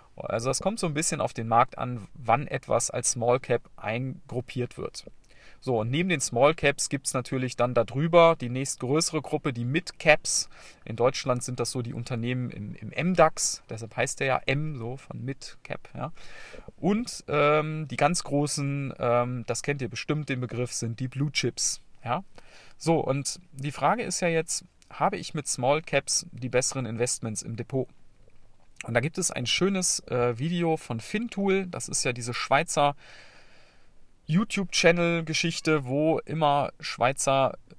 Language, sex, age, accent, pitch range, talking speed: German, male, 40-59, German, 120-155 Hz, 170 wpm